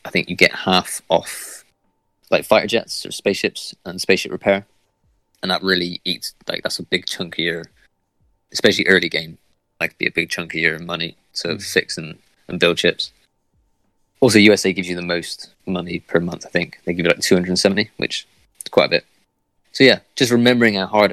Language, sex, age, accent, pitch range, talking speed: English, male, 20-39, British, 85-100 Hz, 205 wpm